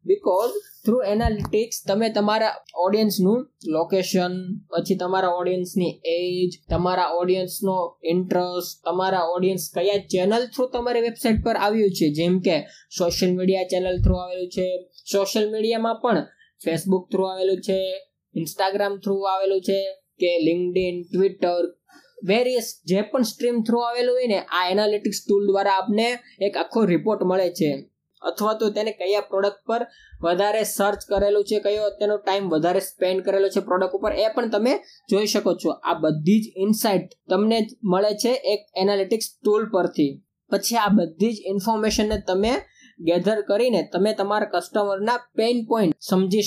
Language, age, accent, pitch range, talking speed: Gujarati, 20-39, native, 185-220 Hz, 35 wpm